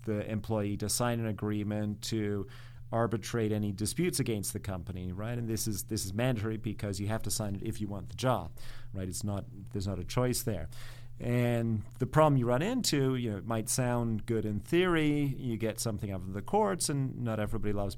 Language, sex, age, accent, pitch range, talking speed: English, male, 40-59, American, 105-120 Hz, 215 wpm